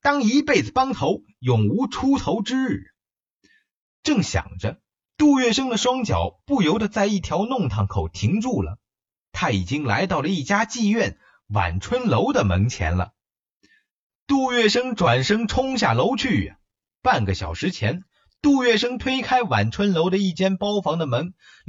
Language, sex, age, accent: Chinese, male, 30-49, native